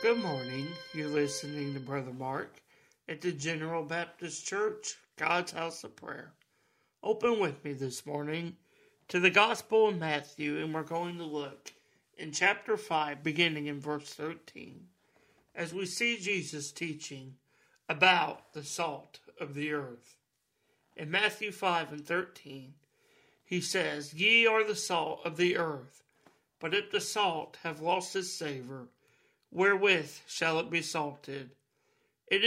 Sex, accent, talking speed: male, American, 140 wpm